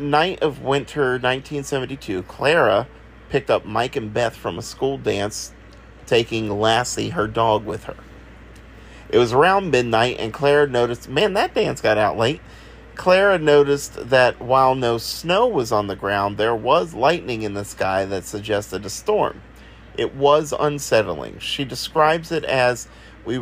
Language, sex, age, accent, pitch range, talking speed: English, male, 40-59, American, 110-150 Hz, 155 wpm